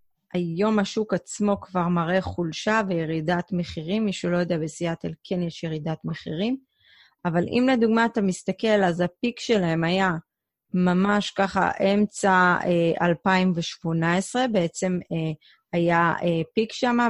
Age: 30-49